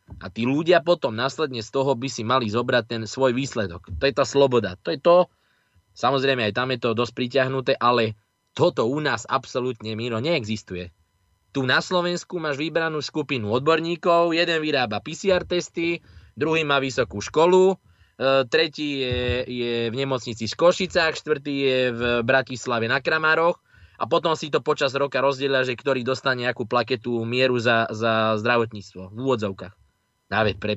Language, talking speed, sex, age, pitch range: Slovak, 160 wpm, male, 20-39, 110-140 Hz